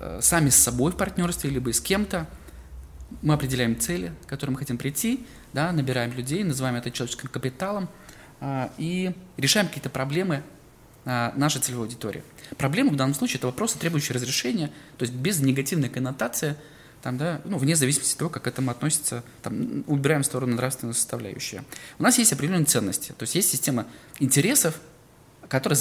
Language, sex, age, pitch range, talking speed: Russian, male, 20-39, 120-155 Hz, 165 wpm